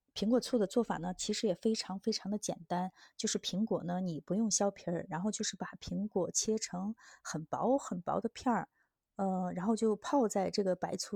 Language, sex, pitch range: Chinese, female, 185-225 Hz